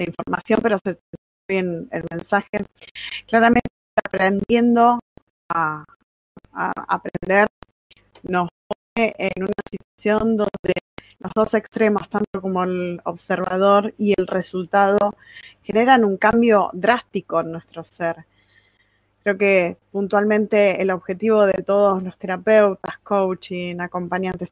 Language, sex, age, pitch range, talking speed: Spanish, female, 20-39, 175-210 Hz, 110 wpm